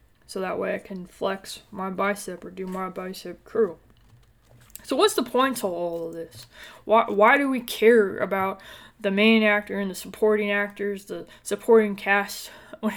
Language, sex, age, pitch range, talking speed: English, female, 20-39, 185-220 Hz, 175 wpm